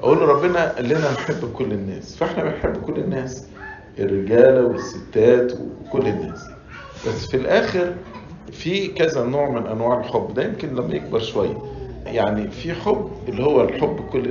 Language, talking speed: English, 150 wpm